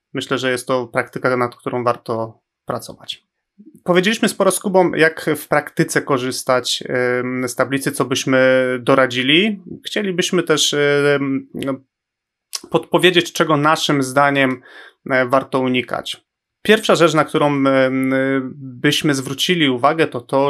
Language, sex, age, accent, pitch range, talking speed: Polish, male, 30-49, native, 130-145 Hz, 110 wpm